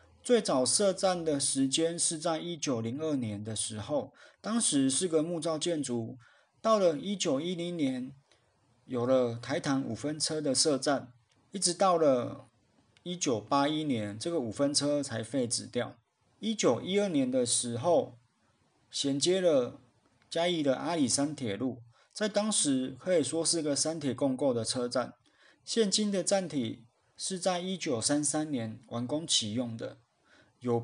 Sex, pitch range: male, 125-175 Hz